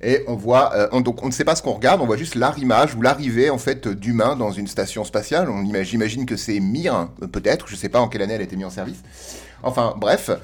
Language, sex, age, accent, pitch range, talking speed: French, male, 30-49, French, 105-135 Hz, 270 wpm